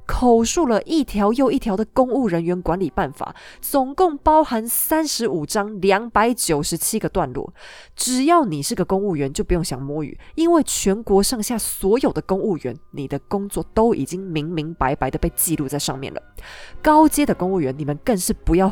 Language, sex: Chinese, female